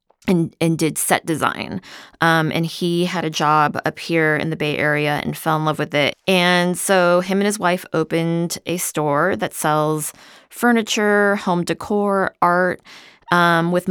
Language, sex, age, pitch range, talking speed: English, female, 20-39, 155-180 Hz, 175 wpm